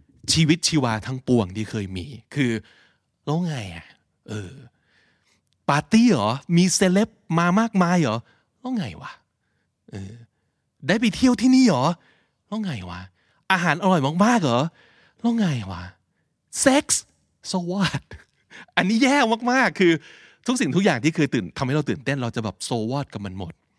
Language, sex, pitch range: Thai, male, 105-165 Hz